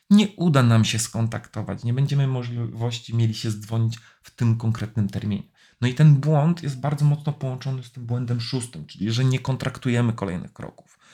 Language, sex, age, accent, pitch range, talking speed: Polish, male, 40-59, native, 105-145 Hz, 180 wpm